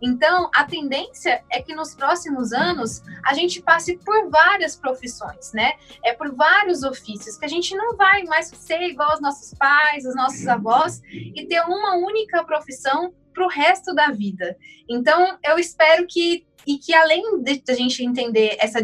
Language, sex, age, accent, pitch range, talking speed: Portuguese, female, 10-29, Brazilian, 255-355 Hz, 175 wpm